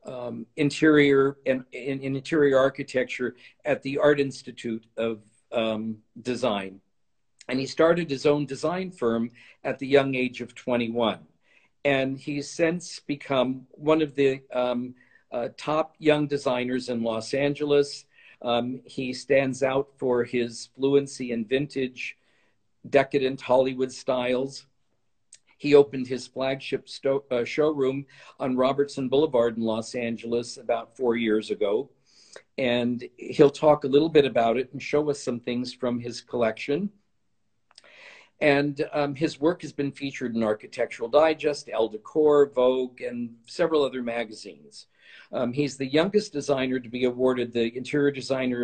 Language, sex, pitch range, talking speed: English, male, 120-145 Hz, 140 wpm